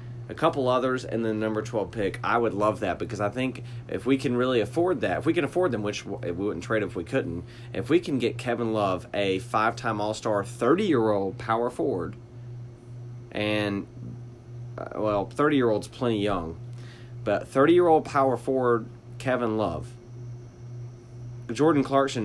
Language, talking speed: English, 155 wpm